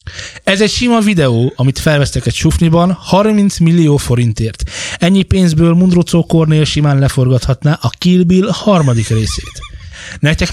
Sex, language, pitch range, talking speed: male, Hungarian, 125-175 Hz, 130 wpm